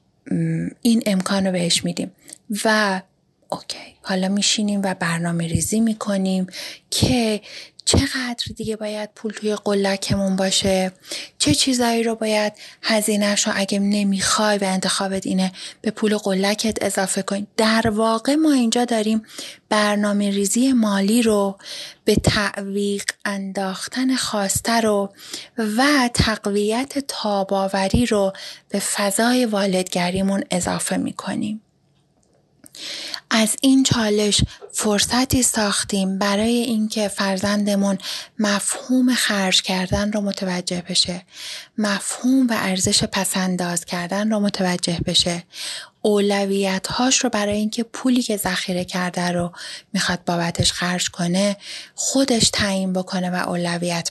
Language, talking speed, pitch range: Persian, 110 wpm, 185-220 Hz